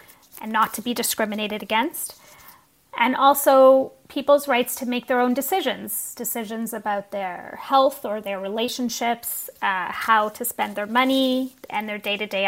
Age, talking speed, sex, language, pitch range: 30-49, 150 wpm, female, English, 210-250 Hz